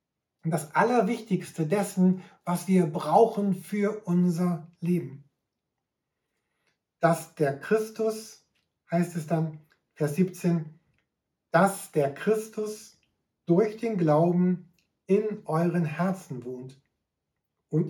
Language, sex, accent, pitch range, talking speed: German, male, German, 155-190 Hz, 95 wpm